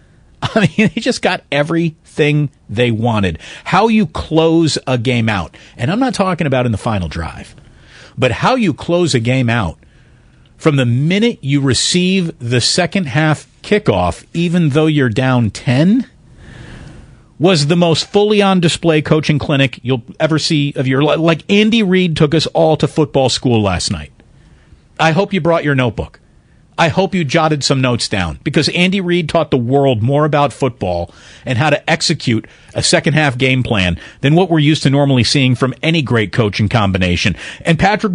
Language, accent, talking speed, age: English, American, 180 wpm, 40-59